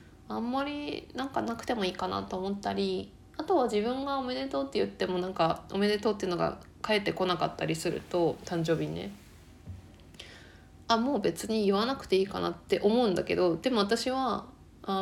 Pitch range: 170-230 Hz